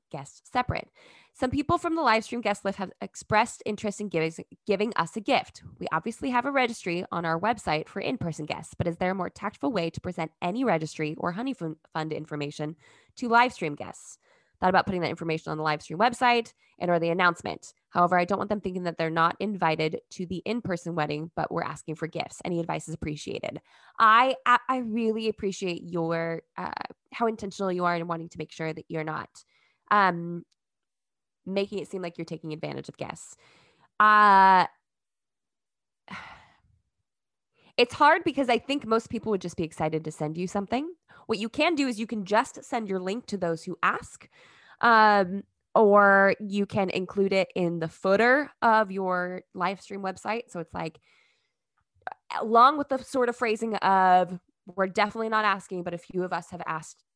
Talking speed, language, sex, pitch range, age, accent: 190 wpm, English, female, 170-225 Hz, 20-39, American